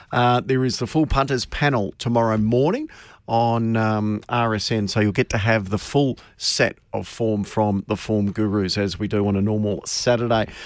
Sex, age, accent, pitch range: male, 40-59, Australian, 110-140 Hz